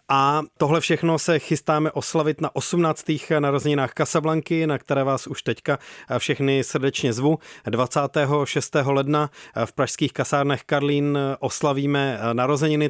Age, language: 40-59, Czech